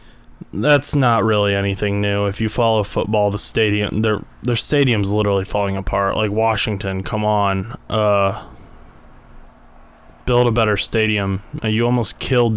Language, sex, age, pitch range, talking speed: English, male, 20-39, 110-160 Hz, 145 wpm